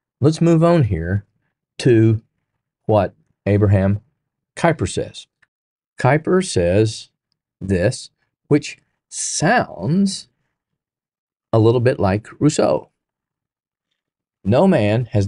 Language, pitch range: English, 100-130 Hz